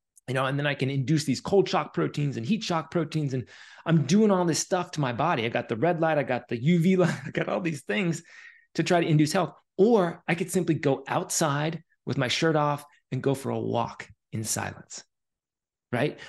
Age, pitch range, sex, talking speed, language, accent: 30-49, 125-165 Hz, male, 230 wpm, English, American